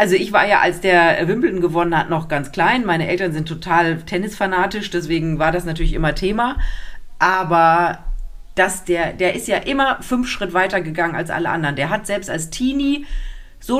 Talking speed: 185 wpm